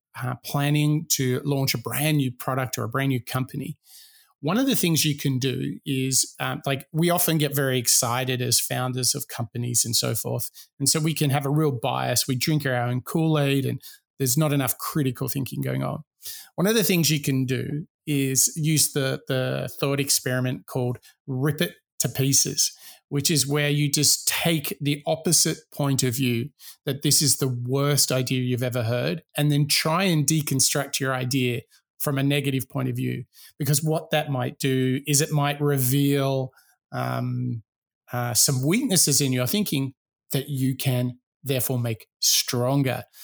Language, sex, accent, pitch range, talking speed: English, male, Australian, 130-155 Hz, 180 wpm